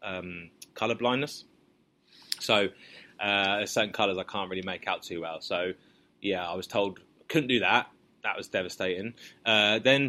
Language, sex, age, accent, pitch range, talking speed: English, male, 20-39, British, 95-115 Hz, 165 wpm